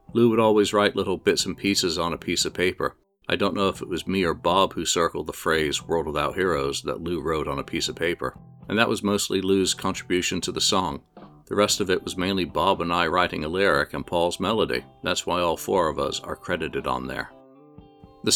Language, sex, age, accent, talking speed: English, male, 50-69, American, 235 wpm